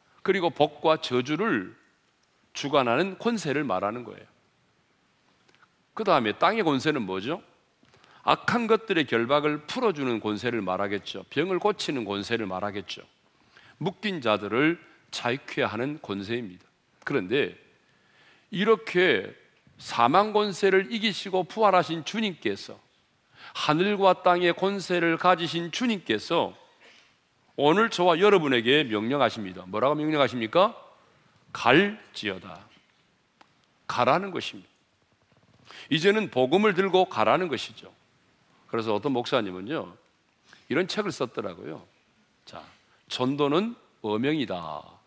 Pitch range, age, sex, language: 120-195 Hz, 40-59, male, Korean